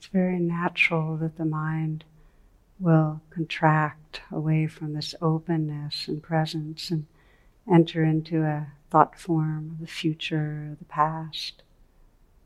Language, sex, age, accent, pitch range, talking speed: English, female, 60-79, American, 155-170 Hz, 120 wpm